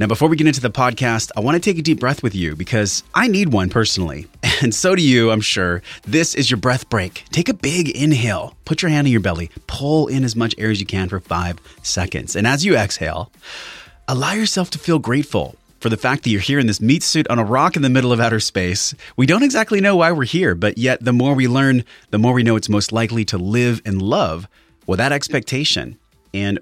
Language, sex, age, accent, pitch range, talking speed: English, male, 30-49, American, 100-130 Hz, 245 wpm